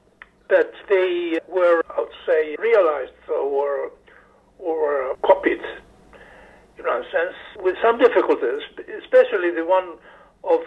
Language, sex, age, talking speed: English, male, 60-79, 125 wpm